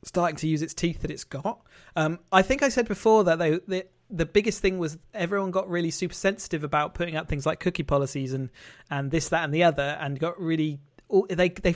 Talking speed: 230 wpm